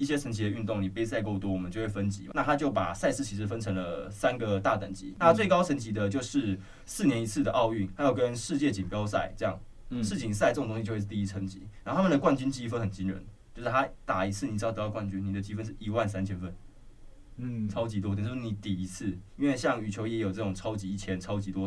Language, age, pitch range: Chinese, 20-39, 95-115 Hz